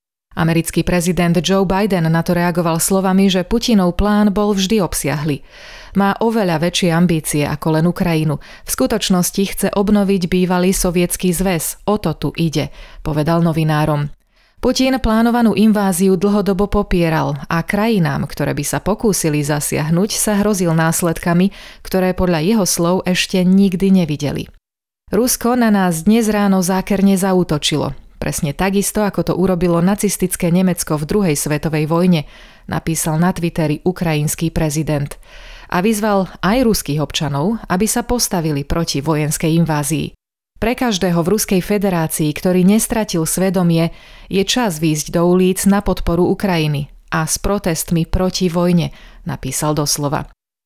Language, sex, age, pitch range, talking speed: Slovak, female, 30-49, 160-200 Hz, 135 wpm